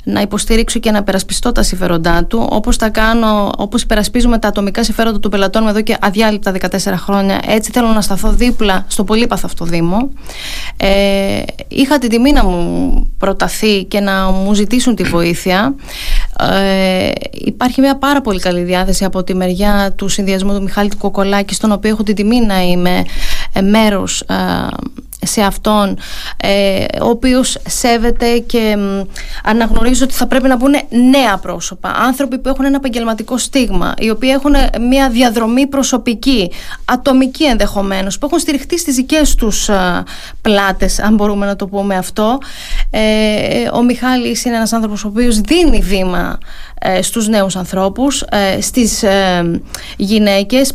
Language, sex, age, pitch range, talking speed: Greek, female, 20-39, 195-245 Hz, 145 wpm